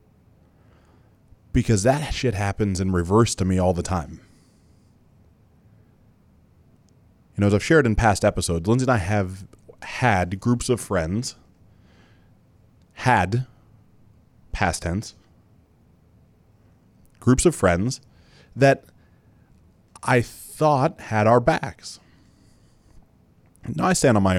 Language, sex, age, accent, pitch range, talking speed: English, male, 20-39, American, 95-125 Hz, 110 wpm